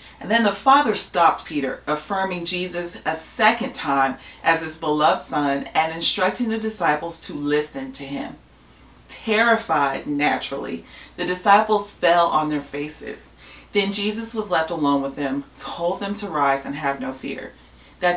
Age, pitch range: 30-49, 145-200 Hz